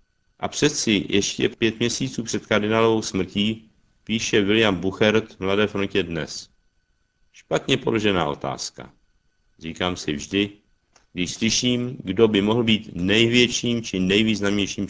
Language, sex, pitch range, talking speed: Czech, male, 95-115 Hz, 120 wpm